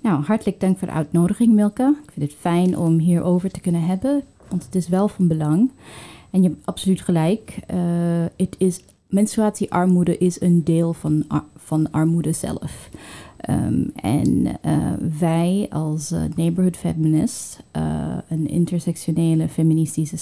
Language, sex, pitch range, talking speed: Dutch, female, 160-185 Hz, 140 wpm